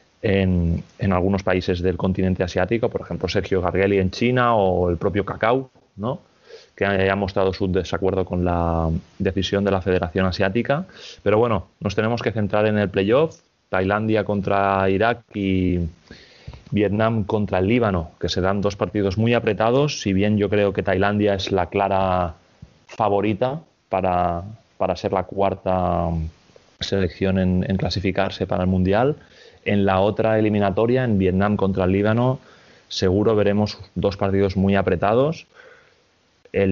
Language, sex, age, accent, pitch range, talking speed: Spanish, male, 30-49, Spanish, 90-105 Hz, 150 wpm